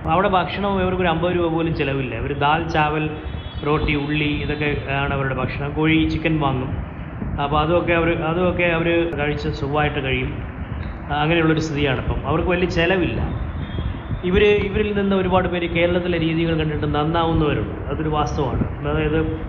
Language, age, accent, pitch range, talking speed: Malayalam, 20-39, native, 130-165 Hz, 140 wpm